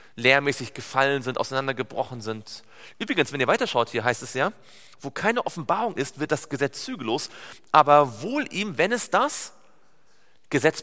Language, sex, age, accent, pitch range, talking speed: German, male, 40-59, German, 130-185 Hz, 155 wpm